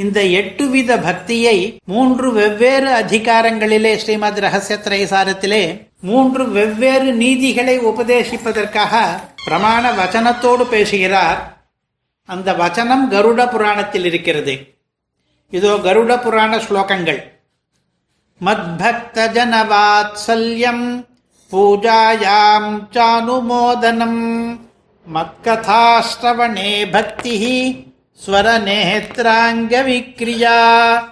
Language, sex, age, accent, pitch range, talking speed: Tamil, male, 60-79, native, 210-240 Hz, 60 wpm